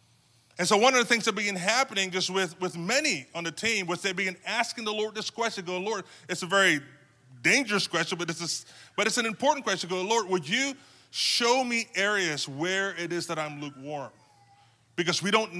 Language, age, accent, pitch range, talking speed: English, 20-39, American, 150-200 Hz, 210 wpm